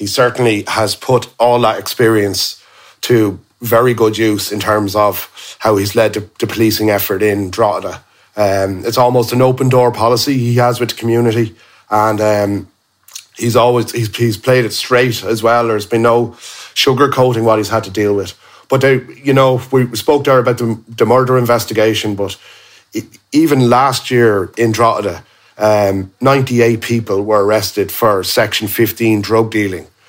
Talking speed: 170 wpm